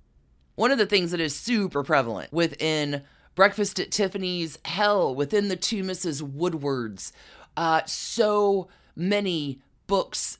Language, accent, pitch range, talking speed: English, American, 145-190 Hz, 125 wpm